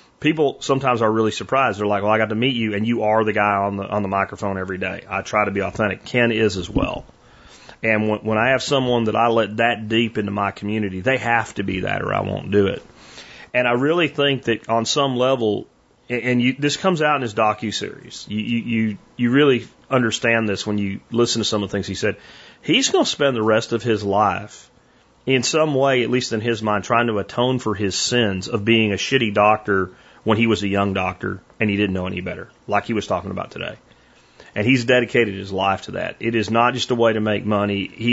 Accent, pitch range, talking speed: American, 105-125 Hz, 245 wpm